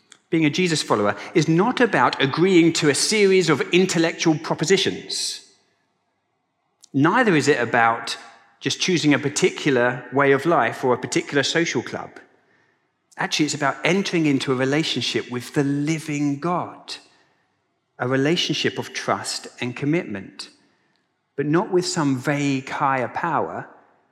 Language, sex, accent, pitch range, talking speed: English, male, British, 125-160 Hz, 135 wpm